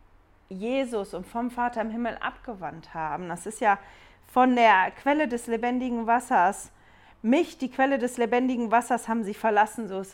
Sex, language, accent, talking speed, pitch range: female, German, German, 165 wpm, 190-235 Hz